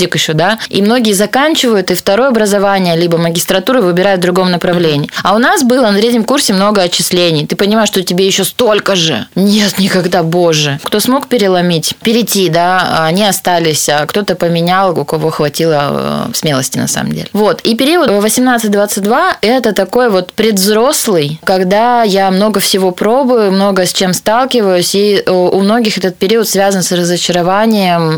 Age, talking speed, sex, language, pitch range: 20-39, 160 wpm, female, Russian, 180-225 Hz